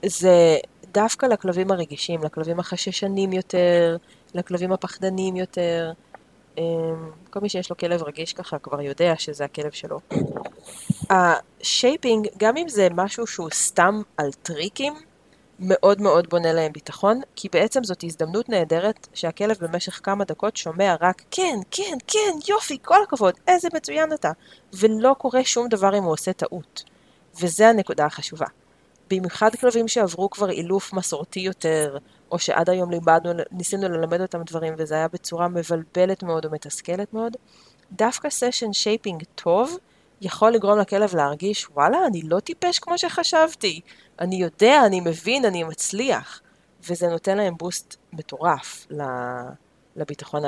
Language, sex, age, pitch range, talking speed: Hebrew, female, 20-39, 160-210 Hz, 135 wpm